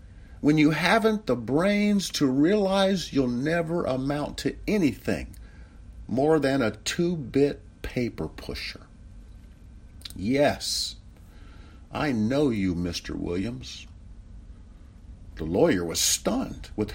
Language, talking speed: English, 105 wpm